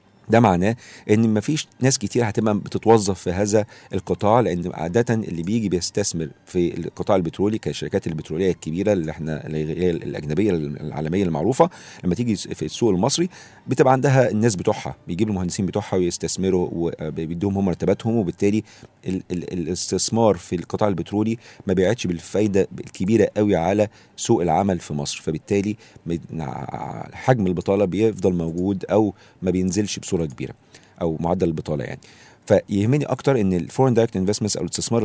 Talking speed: 140 wpm